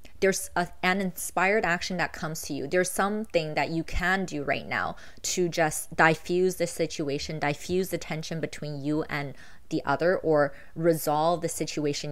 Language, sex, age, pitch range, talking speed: English, female, 20-39, 140-175 Hz, 170 wpm